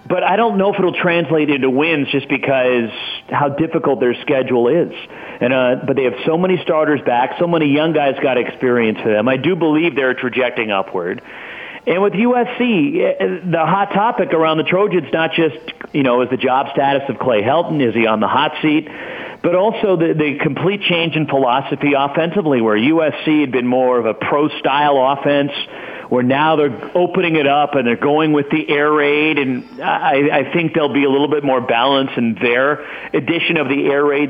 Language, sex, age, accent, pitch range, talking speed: English, male, 50-69, American, 130-165 Hz, 200 wpm